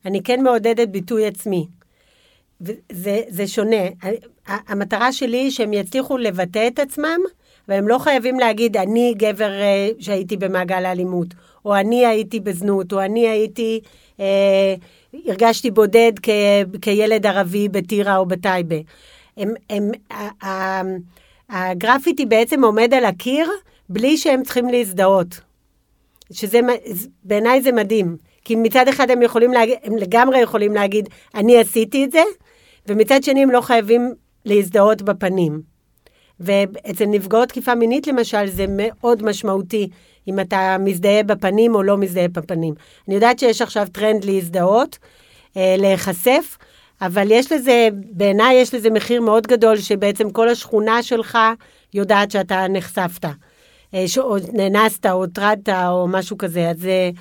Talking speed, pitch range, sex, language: 130 wpm, 195-235 Hz, female, Hebrew